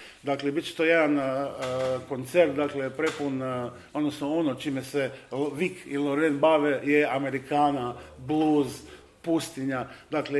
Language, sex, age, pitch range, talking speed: Croatian, male, 50-69, 130-155 Hz, 135 wpm